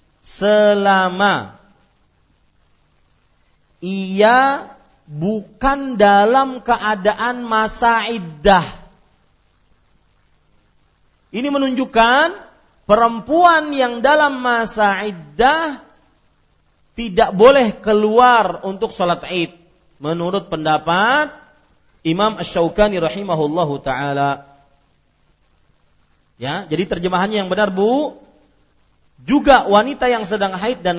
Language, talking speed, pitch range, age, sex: Malay, 75 wpm, 155-235 Hz, 40-59, male